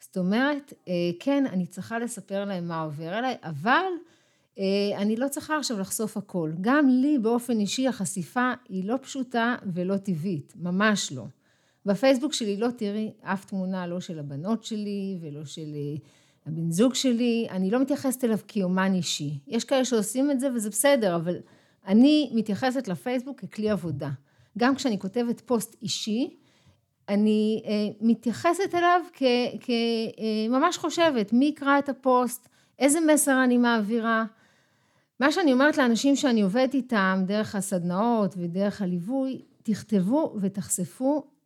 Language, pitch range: Hebrew, 185-255 Hz